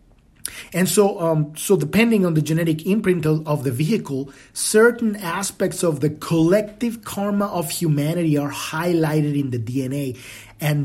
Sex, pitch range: male, 150-205 Hz